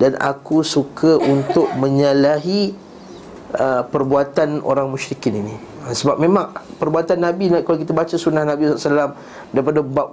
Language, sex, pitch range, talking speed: Malay, male, 140-165 Hz, 135 wpm